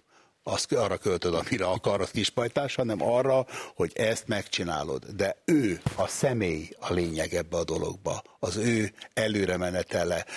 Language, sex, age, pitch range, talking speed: Hungarian, male, 60-79, 95-125 Hz, 145 wpm